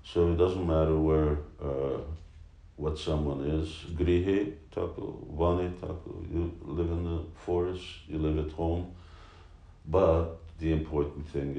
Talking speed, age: 135 wpm, 50-69